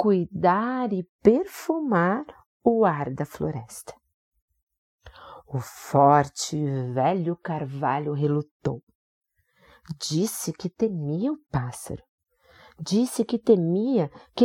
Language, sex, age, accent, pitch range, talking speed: Portuguese, female, 40-59, Brazilian, 140-210 Hz, 85 wpm